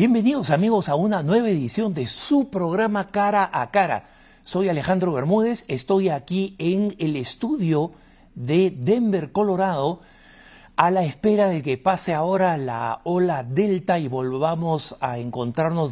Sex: male